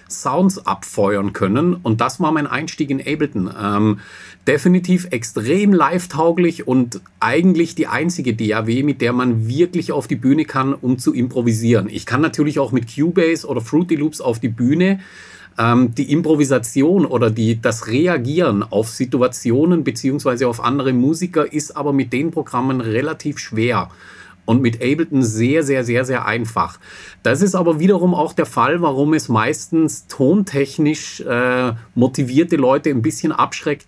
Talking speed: 150 wpm